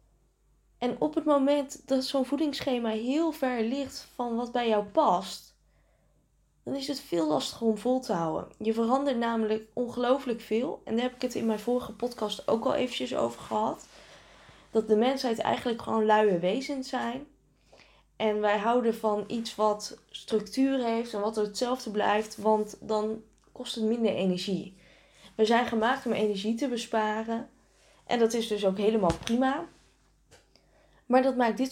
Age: 20-39